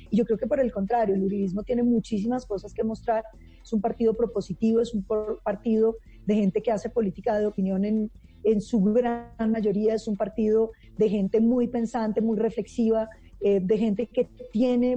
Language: Spanish